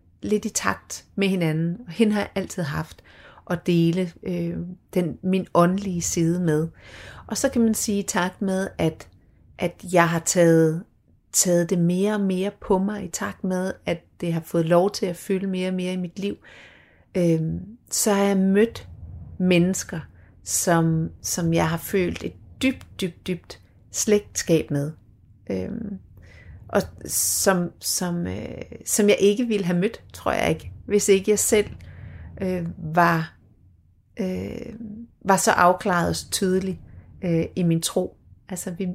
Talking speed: 165 wpm